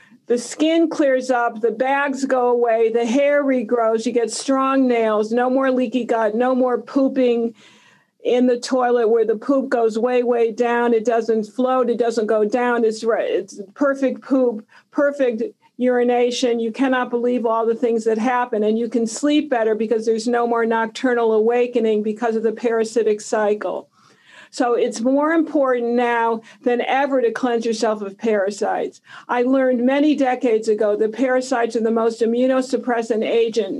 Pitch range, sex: 225-245 Hz, female